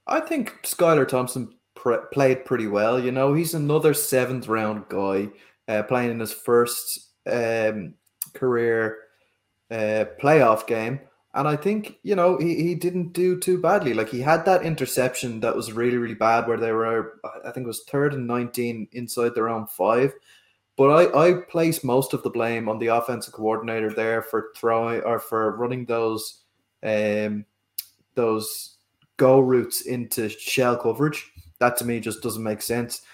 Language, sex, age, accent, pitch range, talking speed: English, male, 20-39, Irish, 110-135 Hz, 170 wpm